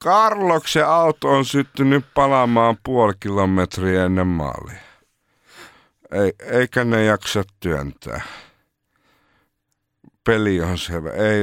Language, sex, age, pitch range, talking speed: Finnish, male, 50-69, 90-125 Hz, 100 wpm